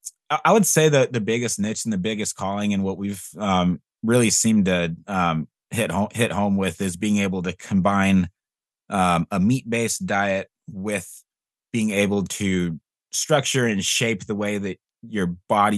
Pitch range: 90-115 Hz